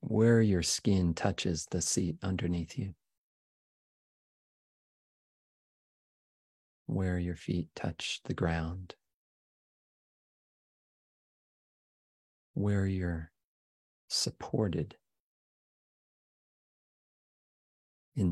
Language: English